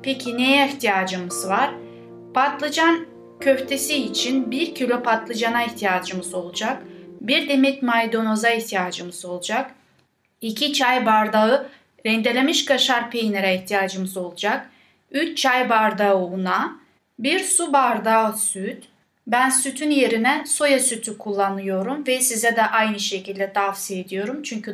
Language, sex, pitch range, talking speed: Turkish, female, 205-265 Hz, 115 wpm